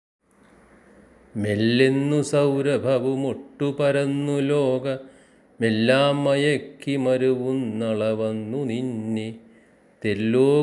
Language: Malayalam